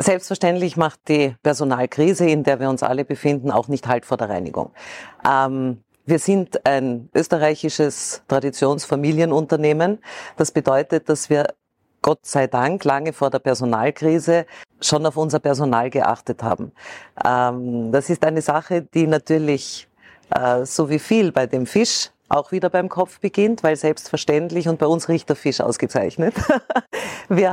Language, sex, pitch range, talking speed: German, female, 140-170 Hz, 145 wpm